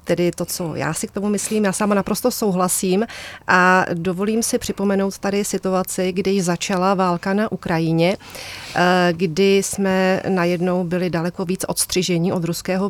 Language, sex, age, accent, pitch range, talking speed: Czech, female, 40-59, native, 175-200 Hz, 150 wpm